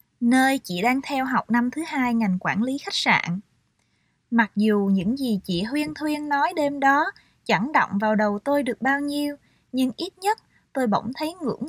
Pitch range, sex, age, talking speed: 205-270 Hz, female, 20-39, 195 wpm